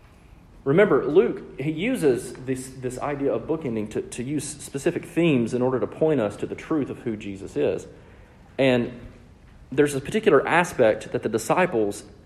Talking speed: 165 wpm